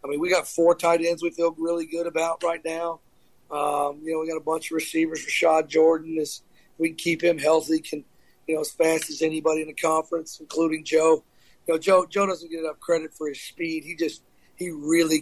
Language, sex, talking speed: English, male, 230 wpm